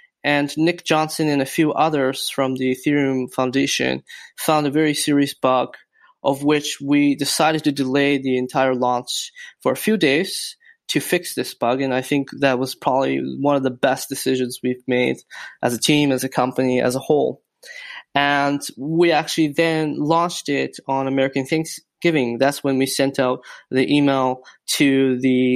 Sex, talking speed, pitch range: male, 170 wpm, 130-155 Hz